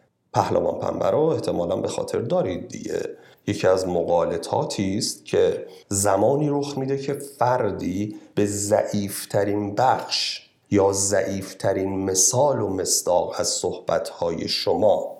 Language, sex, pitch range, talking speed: Persian, male, 105-155 Hz, 105 wpm